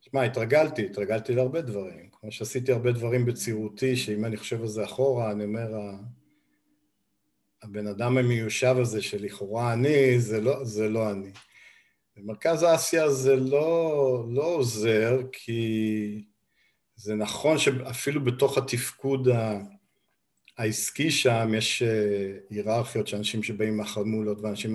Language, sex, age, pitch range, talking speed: Hebrew, male, 50-69, 110-135 Hz, 125 wpm